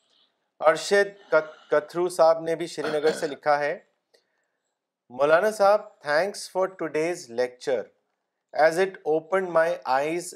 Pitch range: 150-185 Hz